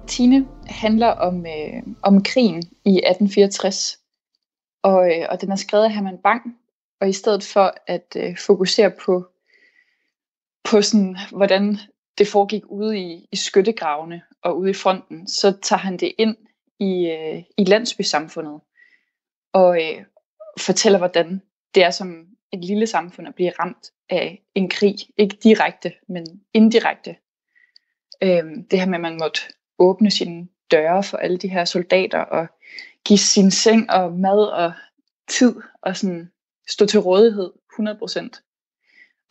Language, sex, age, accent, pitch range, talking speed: Danish, female, 20-39, native, 185-225 Hz, 145 wpm